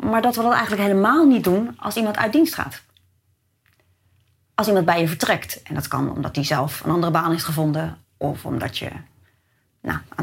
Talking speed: 195 wpm